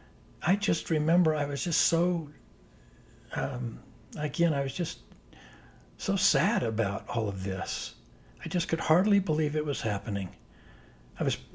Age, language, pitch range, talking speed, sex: 60-79, English, 115-155 Hz, 145 wpm, male